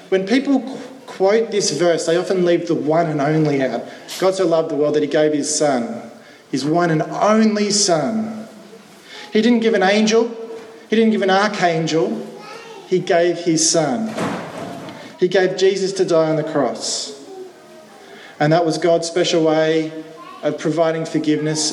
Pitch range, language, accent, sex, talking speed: 160-210 Hz, English, Australian, male, 165 wpm